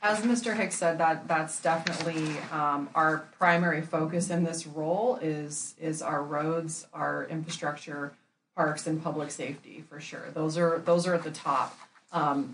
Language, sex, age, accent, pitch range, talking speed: English, female, 30-49, American, 155-175 Hz, 165 wpm